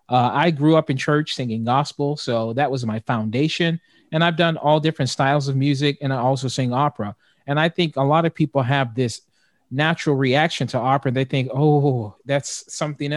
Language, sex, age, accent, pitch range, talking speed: English, male, 40-59, American, 125-150 Hz, 200 wpm